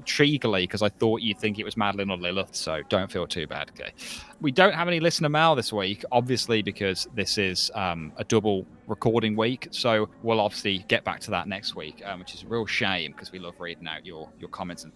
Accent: British